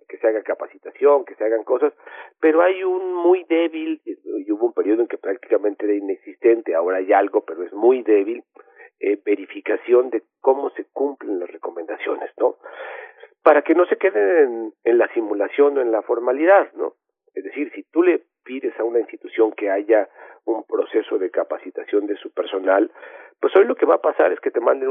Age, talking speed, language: 50-69, 195 wpm, Spanish